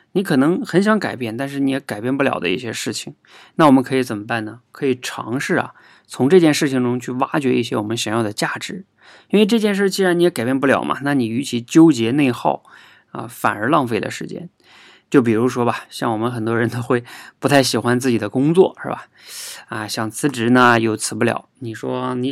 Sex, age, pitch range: male, 20-39, 115-145 Hz